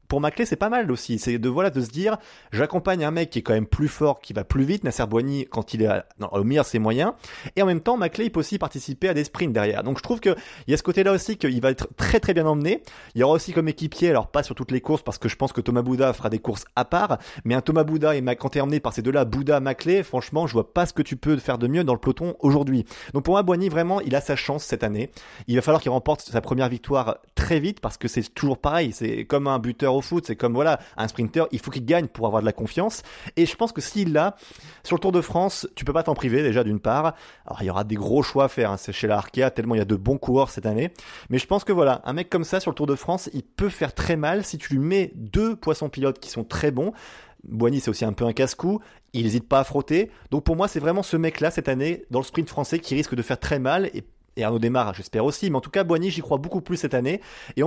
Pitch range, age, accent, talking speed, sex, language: 120-165 Hz, 30-49, French, 295 wpm, male, French